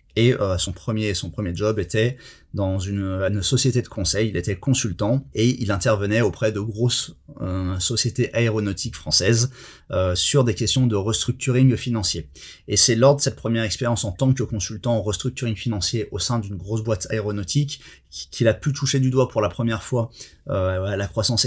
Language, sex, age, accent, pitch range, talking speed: French, male, 30-49, French, 100-125 Hz, 190 wpm